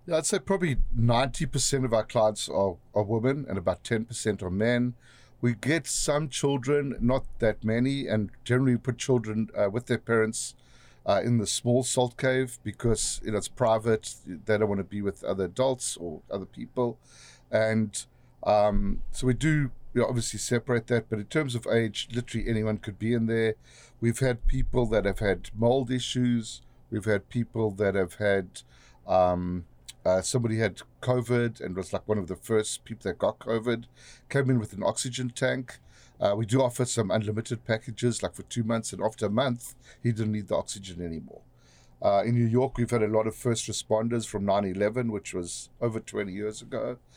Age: 50-69